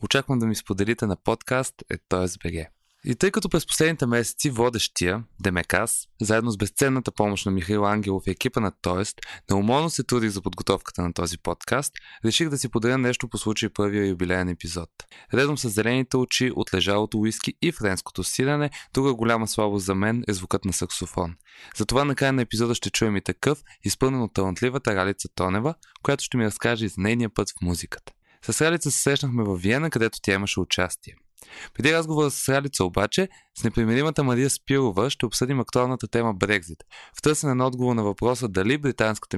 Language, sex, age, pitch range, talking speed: Bulgarian, male, 20-39, 95-125 Hz, 185 wpm